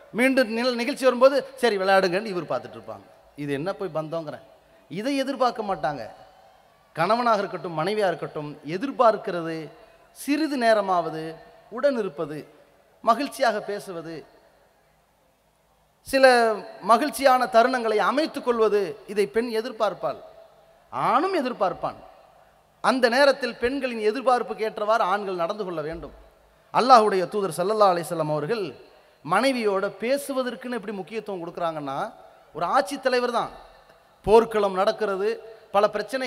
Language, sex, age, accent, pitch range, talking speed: English, male, 30-49, Indian, 185-250 Hz, 125 wpm